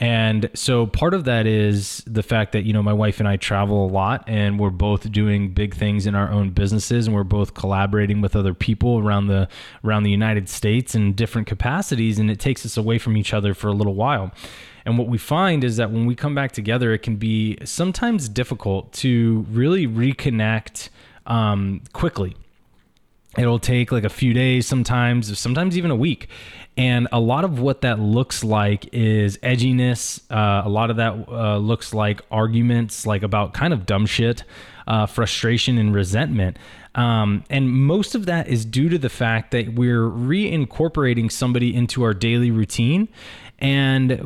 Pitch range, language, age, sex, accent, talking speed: 105-125 Hz, English, 20-39, male, American, 185 wpm